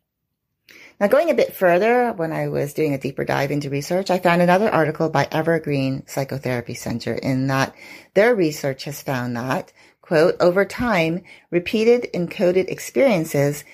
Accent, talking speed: American, 155 wpm